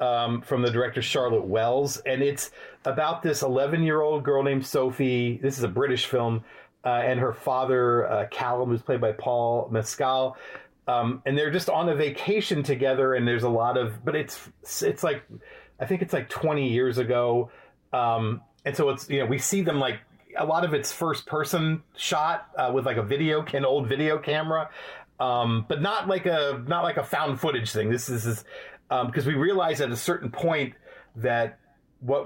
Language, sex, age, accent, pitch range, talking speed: English, male, 40-59, American, 120-140 Hz, 200 wpm